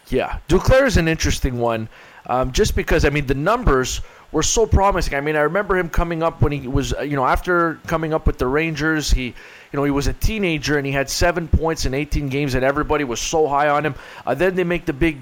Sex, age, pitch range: male, 20-39, 140-175 Hz